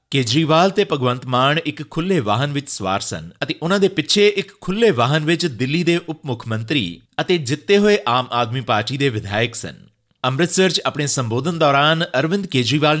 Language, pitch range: Punjabi, 115-165 Hz